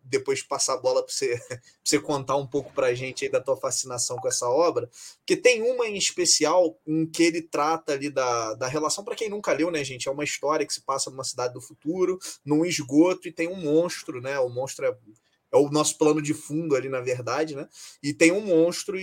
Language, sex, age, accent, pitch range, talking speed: Portuguese, male, 20-39, Brazilian, 145-205 Hz, 230 wpm